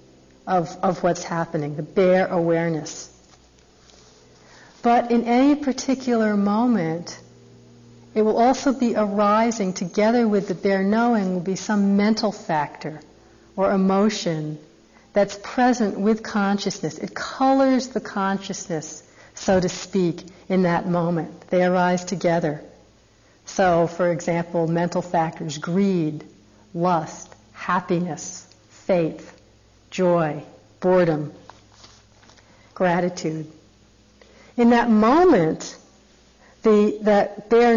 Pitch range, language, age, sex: 160-215 Hz, English, 50-69, female